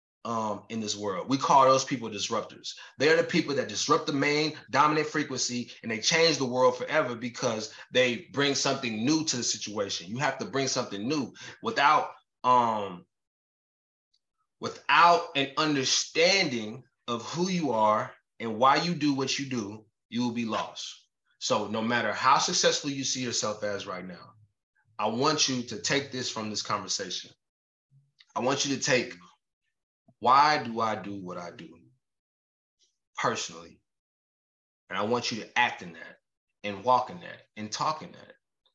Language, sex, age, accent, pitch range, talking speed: English, male, 20-39, American, 115-145 Hz, 165 wpm